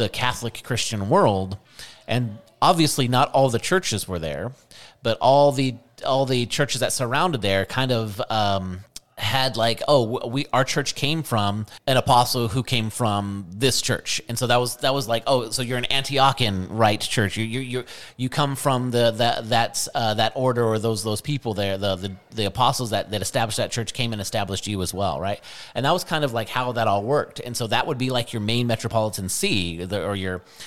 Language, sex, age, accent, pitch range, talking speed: English, male, 30-49, American, 100-125 Hz, 210 wpm